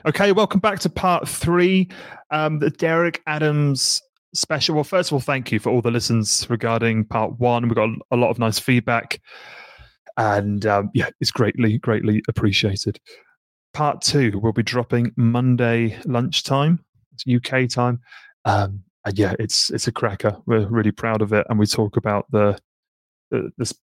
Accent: British